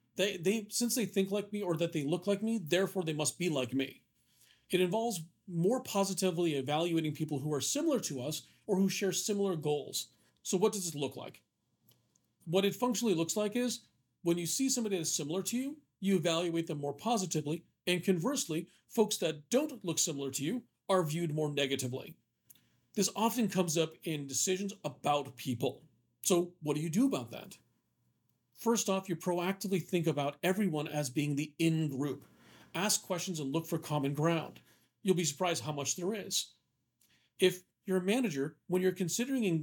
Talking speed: 180 wpm